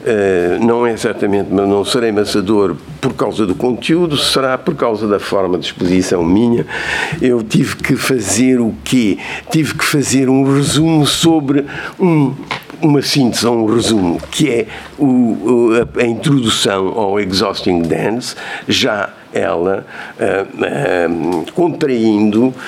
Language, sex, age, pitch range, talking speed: Portuguese, male, 60-79, 105-145 Hz, 120 wpm